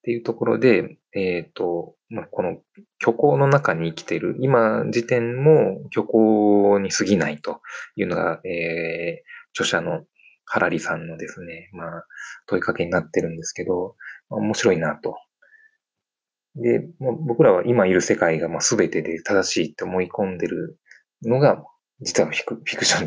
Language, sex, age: Japanese, male, 20-39